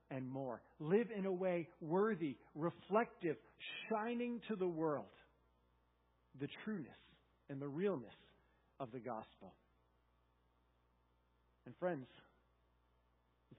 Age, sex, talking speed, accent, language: 50-69, male, 100 wpm, American, English